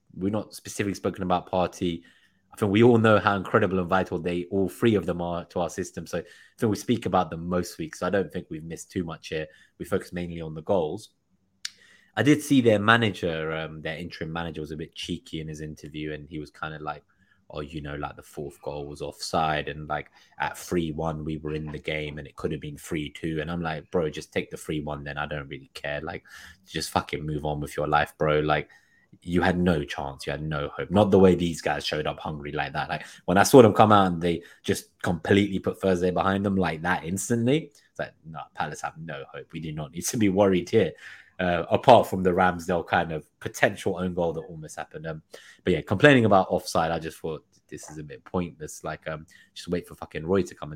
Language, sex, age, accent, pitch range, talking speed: English, male, 20-39, British, 75-95 Hz, 240 wpm